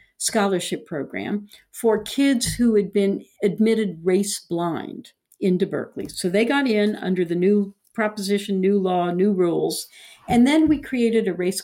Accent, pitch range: American, 175-225 Hz